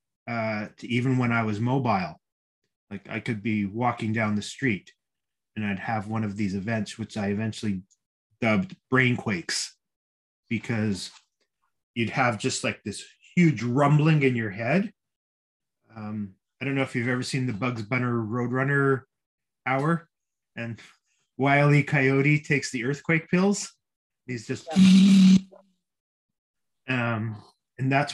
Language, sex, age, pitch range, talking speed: English, male, 30-49, 110-140 Hz, 135 wpm